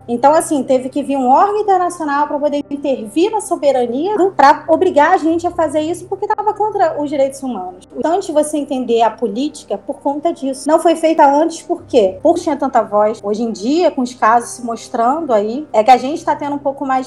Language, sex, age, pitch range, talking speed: Portuguese, female, 20-39, 245-305 Hz, 220 wpm